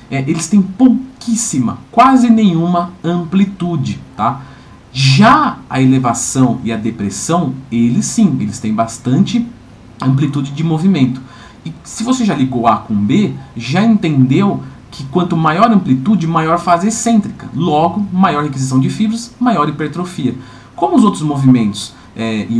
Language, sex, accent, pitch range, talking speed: Portuguese, male, Brazilian, 125-210 Hz, 140 wpm